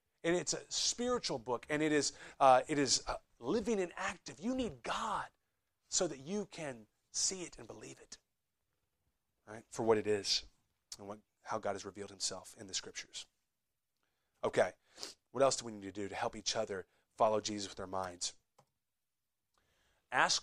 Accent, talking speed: American, 175 wpm